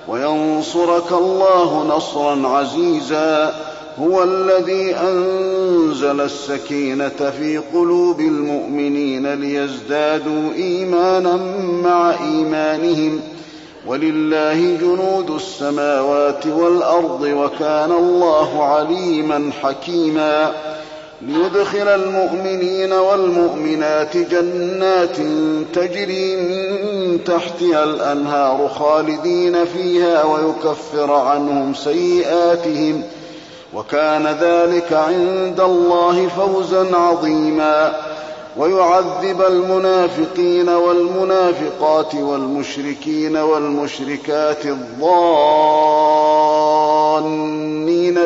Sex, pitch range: male, 150-175 Hz